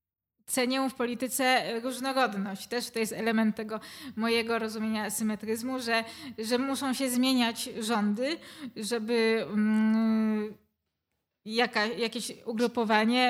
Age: 20-39